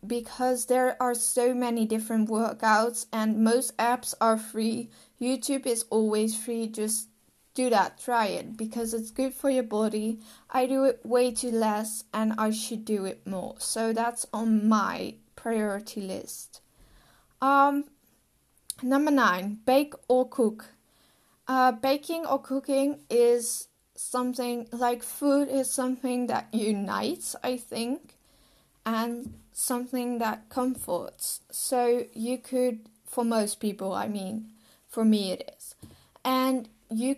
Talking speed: 135 wpm